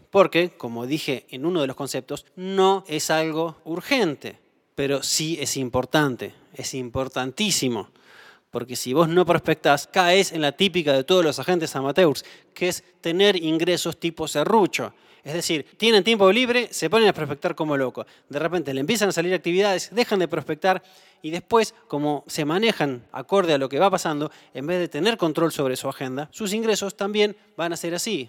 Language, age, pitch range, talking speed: Spanish, 20-39, 150-195 Hz, 180 wpm